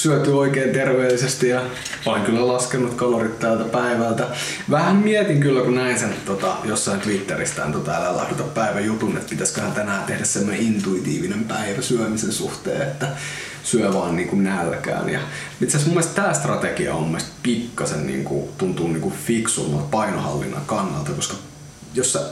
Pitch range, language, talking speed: 115-150 Hz, Finnish, 155 wpm